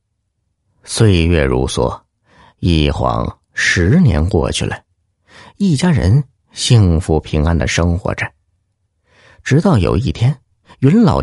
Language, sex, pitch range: Chinese, male, 90-120 Hz